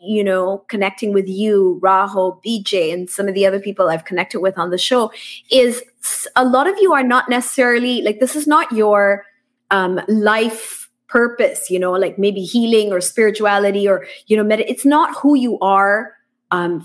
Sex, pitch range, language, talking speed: female, 195-255 Hz, English, 180 wpm